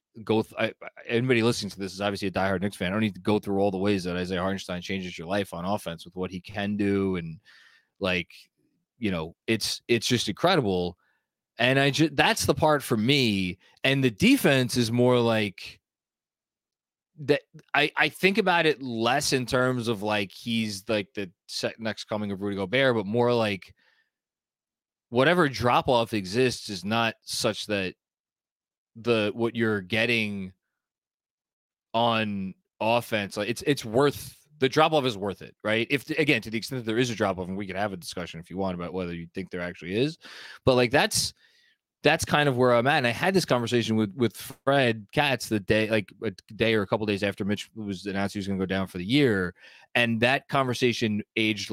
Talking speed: 200 wpm